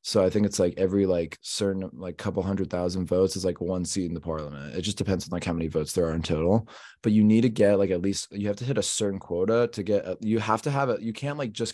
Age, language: 20-39, English